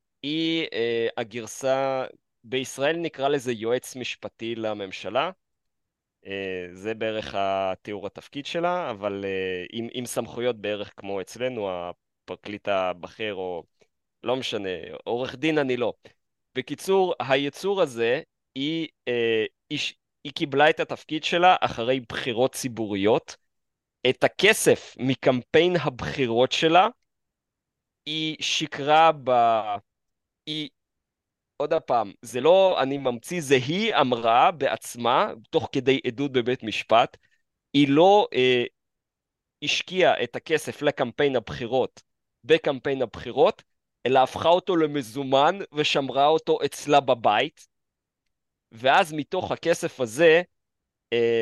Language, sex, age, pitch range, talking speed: Hebrew, male, 20-39, 110-150 Hz, 110 wpm